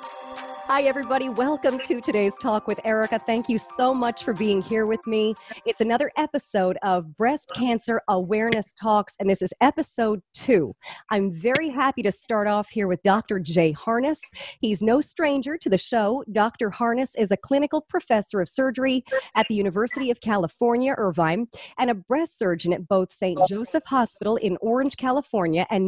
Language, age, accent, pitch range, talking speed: English, 40-59, American, 205-265 Hz, 170 wpm